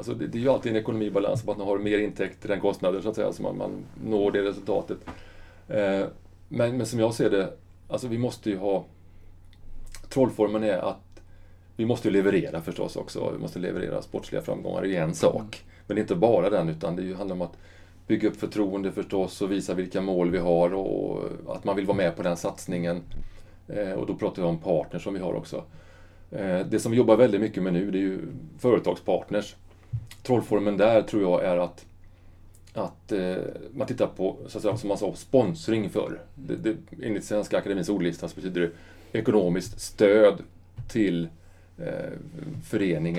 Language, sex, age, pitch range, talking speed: Swedish, male, 30-49, 90-105 Hz, 185 wpm